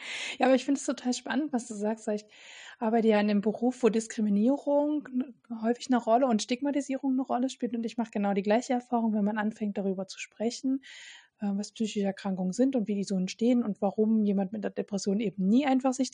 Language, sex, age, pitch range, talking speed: German, female, 20-39, 215-255 Hz, 215 wpm